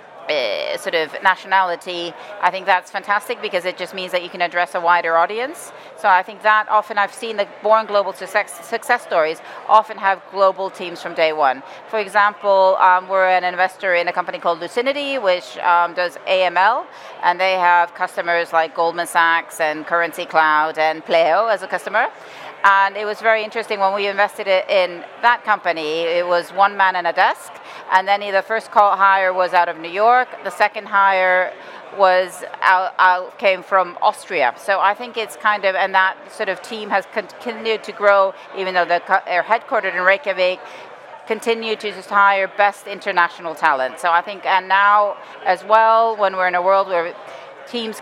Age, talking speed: 40-59, 185 wpm